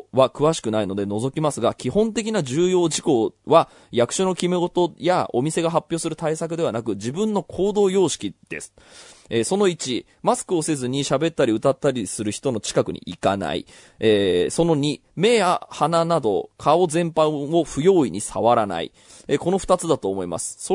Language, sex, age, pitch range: Japanese, male, 20-39, 125-175 Hz